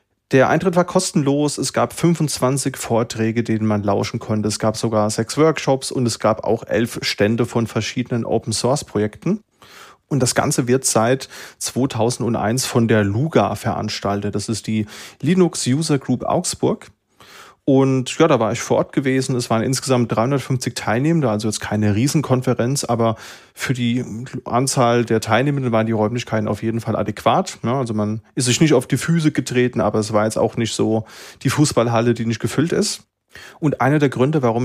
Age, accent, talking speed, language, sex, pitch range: 30-49, German, 175 wpm, German, male, 110-135 Hz